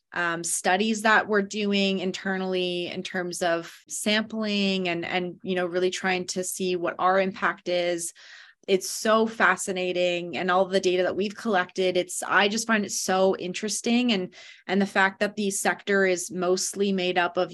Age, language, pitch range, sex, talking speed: 20-39, English, 180-205 Hz, female, 175 wpm